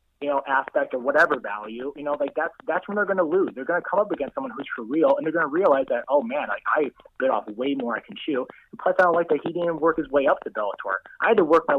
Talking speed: 320 wpm